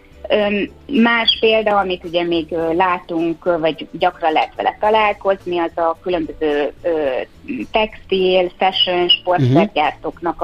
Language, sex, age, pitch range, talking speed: Hungarian, female, 30-49, 170-225 Hz, 100 wpm